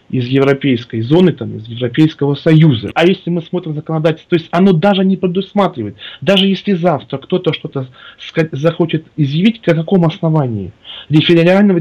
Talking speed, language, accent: 160 wpm, Russian, native